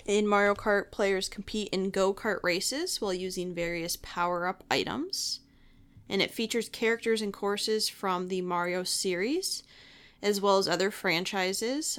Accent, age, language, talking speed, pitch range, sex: American, 20-39, English, 140 wpm, 175-220 Hz, female